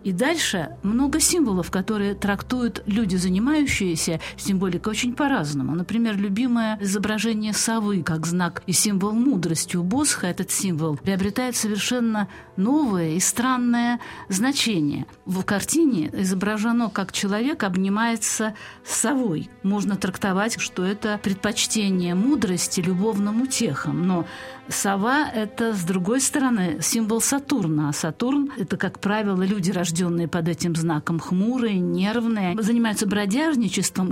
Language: Russian